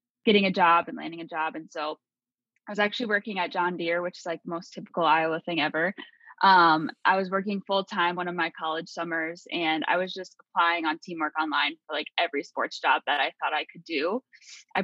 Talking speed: 225 wpm